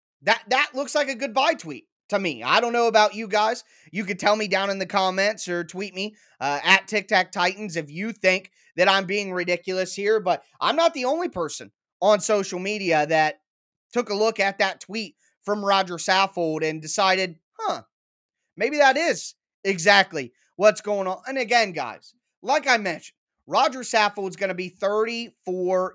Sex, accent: male, American